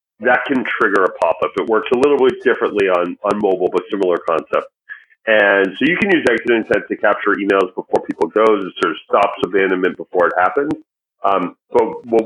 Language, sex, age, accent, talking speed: English, male, 40-59, American, 200 wpm